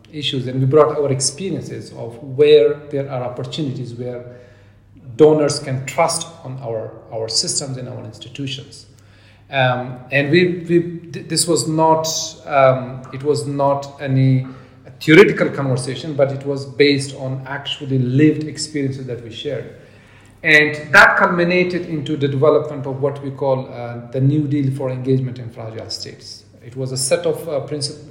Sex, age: male, 40-59